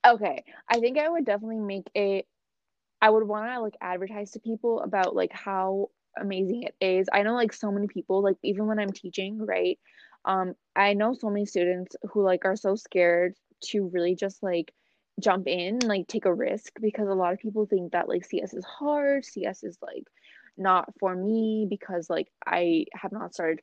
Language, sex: English, female